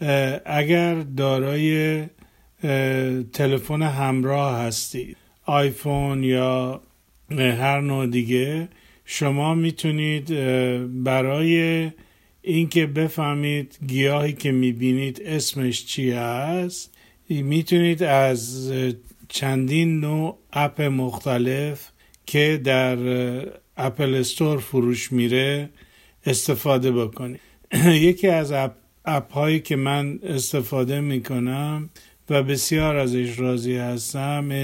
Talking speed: 85 wpm